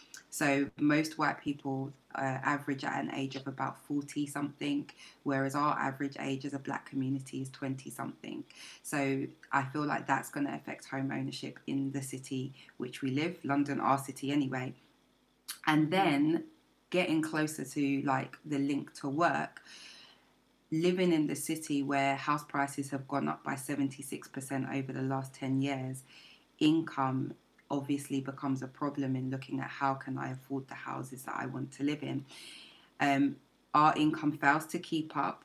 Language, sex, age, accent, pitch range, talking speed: English, female, 20-39, British, 135-150 Hz, 165 wpm